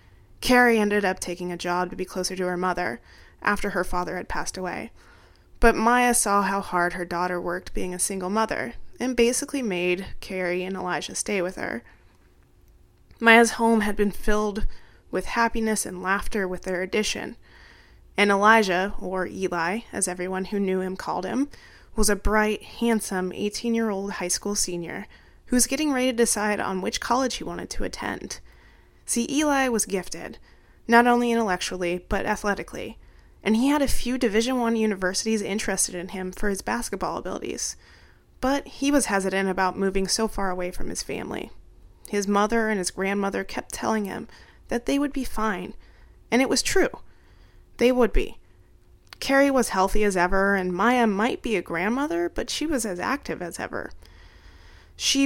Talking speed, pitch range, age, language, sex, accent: 170 wpm, 180-235 Hz, 20-39, English, female, American